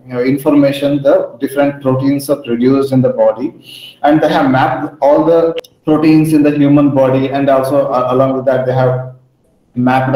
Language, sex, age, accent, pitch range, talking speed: English, male, 30-49, Indian, 120-140 Hz, 185 wpm